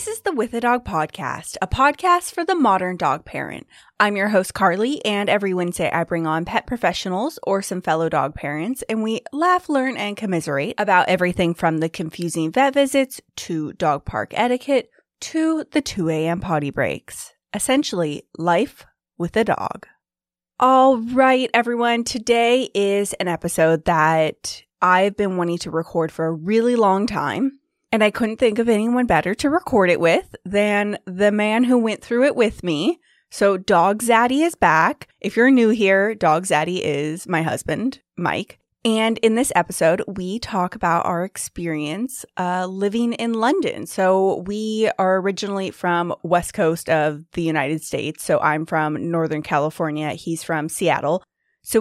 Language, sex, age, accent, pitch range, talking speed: English, female, 20-39, American, 165-235 Hz, 170 wpm